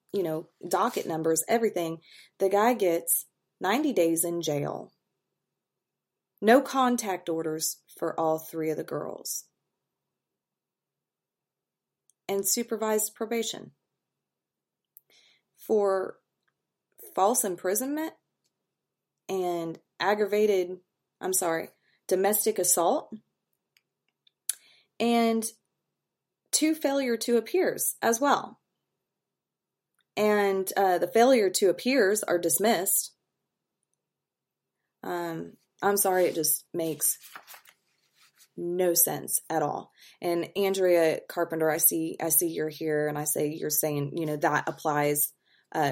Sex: female